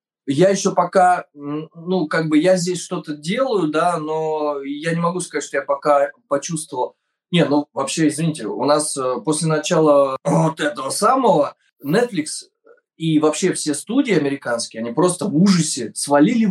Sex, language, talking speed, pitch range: male, Russian, 155 wpm, 145-185 Hz